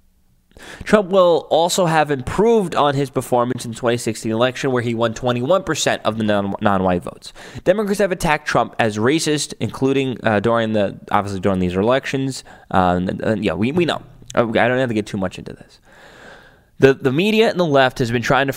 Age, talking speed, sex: 20-39, 200 wpm, male